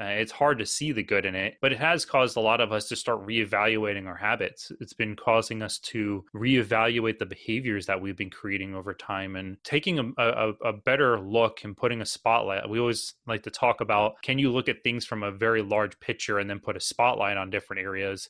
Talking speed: 230 wpm